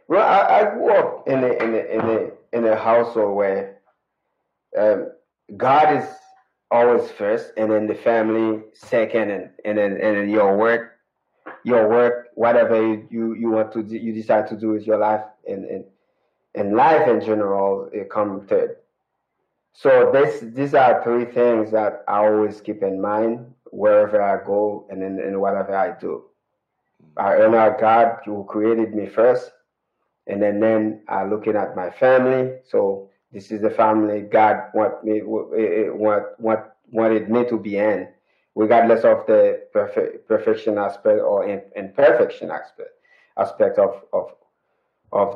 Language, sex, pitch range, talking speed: English, male, 105-140 Hz, 155 wpm